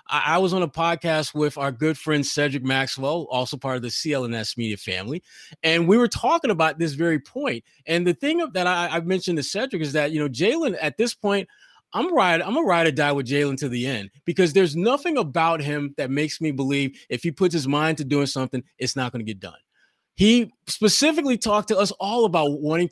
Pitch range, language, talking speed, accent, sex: 145-195 Hz, English, 225 wpm, American, male